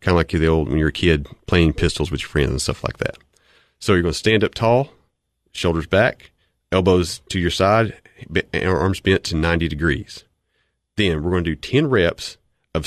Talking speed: 195 wpm